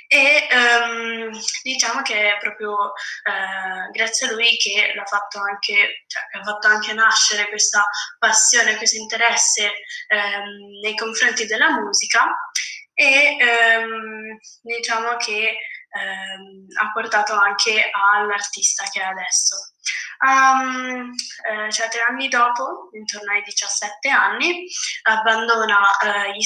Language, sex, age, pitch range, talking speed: Italian, female, 10-29, 205-235 Hz, 95 wpm